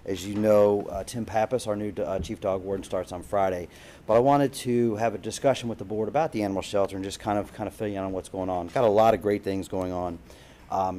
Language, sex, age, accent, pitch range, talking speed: English, male, 40-59, American, 95-110 Hz, 275 wpm